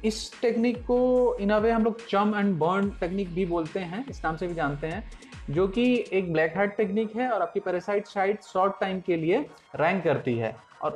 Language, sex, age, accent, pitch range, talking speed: Hindi, male, 30-49, native, 150-205 Hz, 210 wpm